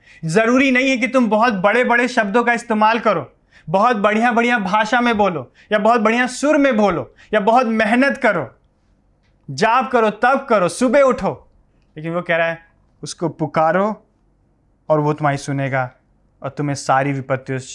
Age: 30-49